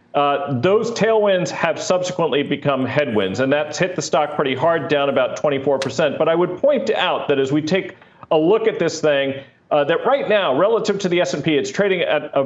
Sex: male